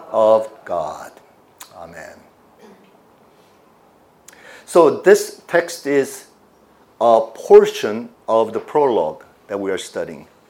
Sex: male